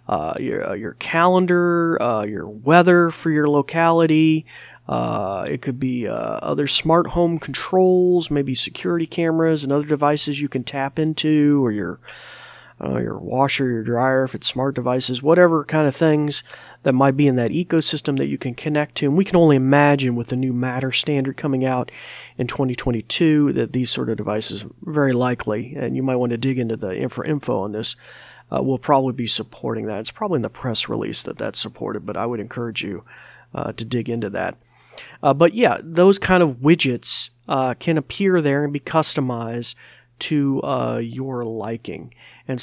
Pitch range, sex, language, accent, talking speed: 125-155 Hz, male, English, American, 190 wpm